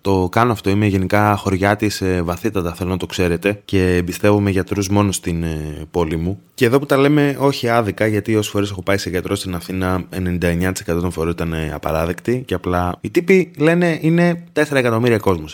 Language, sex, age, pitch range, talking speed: Greek, male, 20-39, 90-120 Hz, 190 wpm